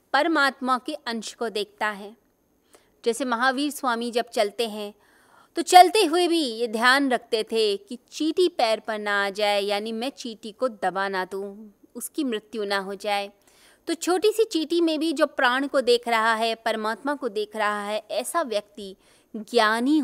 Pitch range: 210-295 Hz